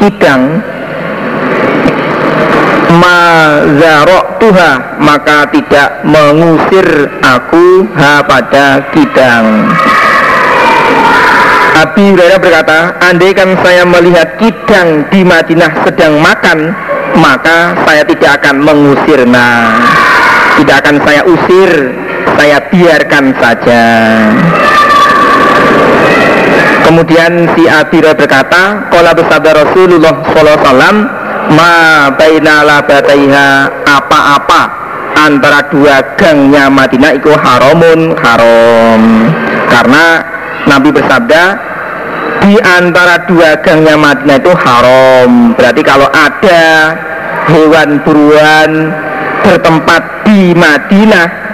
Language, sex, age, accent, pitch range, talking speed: Indonesian, male, 50-69, native, 145-180 Hz, 80 wpm